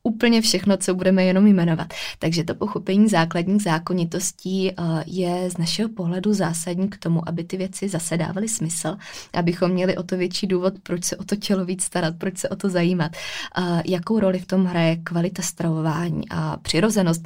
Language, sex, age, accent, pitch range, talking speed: Czech, female, 20-39, native, 165-190 Hz, 175 wpm